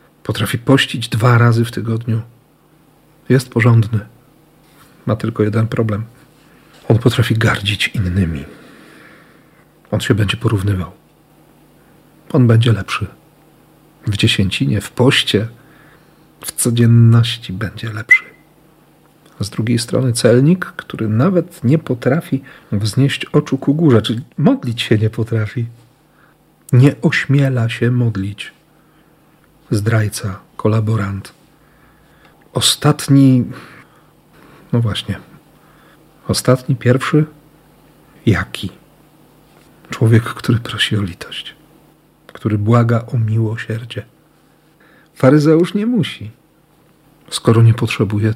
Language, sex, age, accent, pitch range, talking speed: Polish, male, 50-69, native, 110-135 Hz, 95 wpm